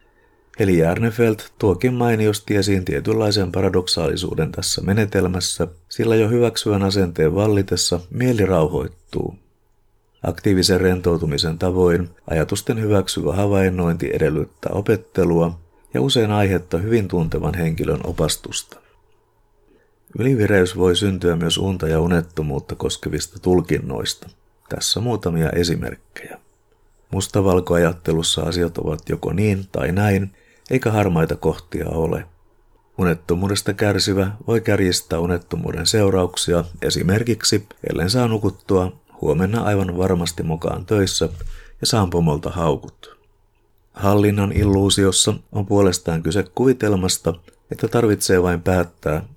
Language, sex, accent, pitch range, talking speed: Finnish, male, native, 85-105 Hz, 100 wpm